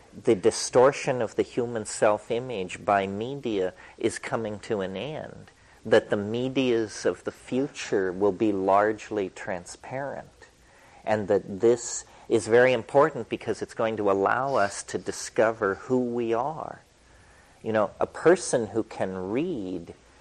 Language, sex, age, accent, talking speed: English, male, 40-59, American, 140 wpm